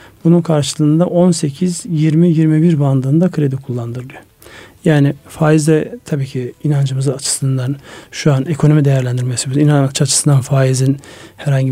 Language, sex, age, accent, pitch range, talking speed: Turkish, male, 40-59, native, 135-160 Hz, 100 wpm